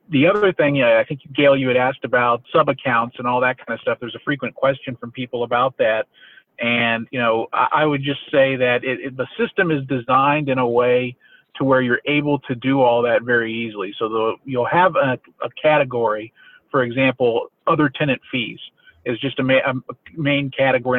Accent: American